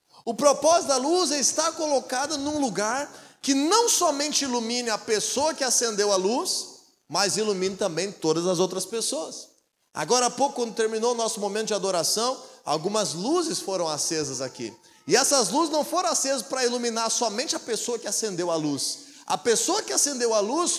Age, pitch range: 20-39, 200-295 Hz